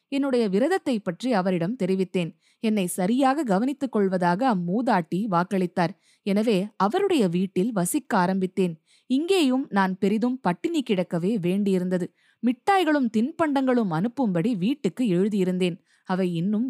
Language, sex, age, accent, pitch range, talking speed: Tamil, female, 20-39, native, 185-255 Hz, 105 wpm